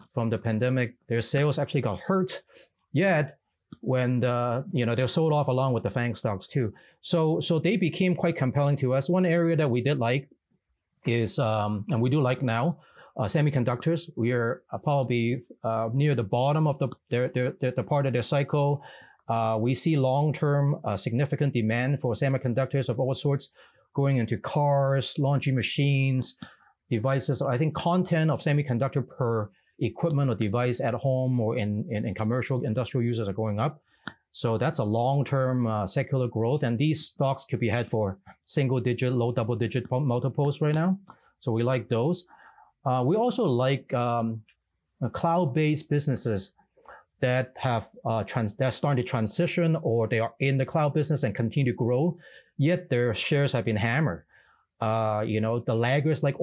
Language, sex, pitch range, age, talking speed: English, male, 120-145 Hz, 40-59, 180 wpm